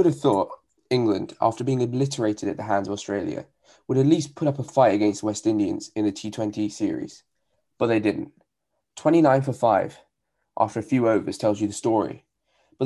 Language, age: English, 10-29